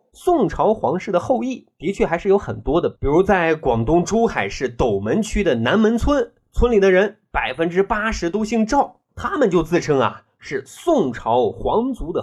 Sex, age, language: male, 20-39, Chinese